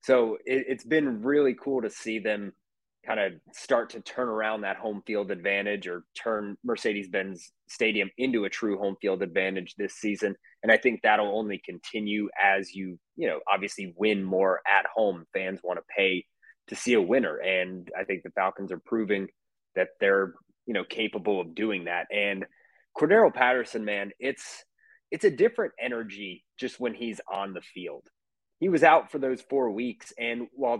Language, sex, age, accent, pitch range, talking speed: English, male, 30-49, American, 100-120 Hz, 180 wpm